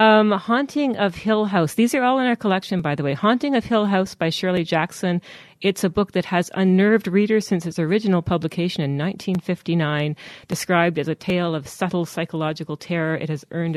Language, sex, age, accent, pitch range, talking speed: English, female, 40-59, American, 150-185 Hz, 195 wpm